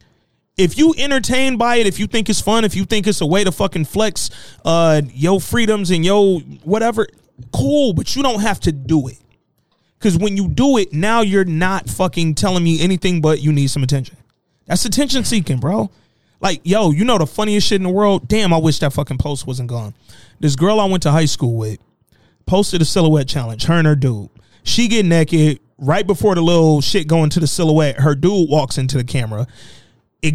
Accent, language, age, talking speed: American, English, 30-49, 210 wpm